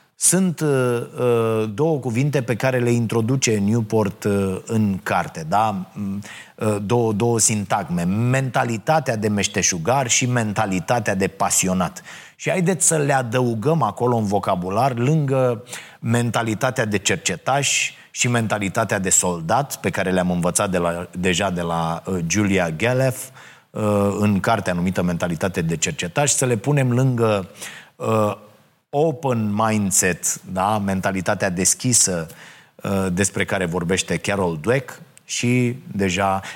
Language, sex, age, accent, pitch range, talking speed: Romanian, male, 30-49, native, 95-125 Hz, 125 wpm